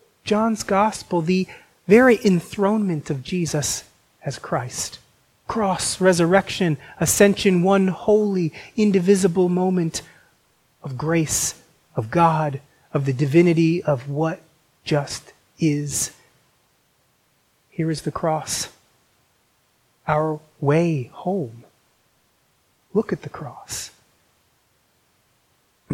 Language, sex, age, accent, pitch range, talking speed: English, male, 30-49, American, 150-195 Hz, 90 wpm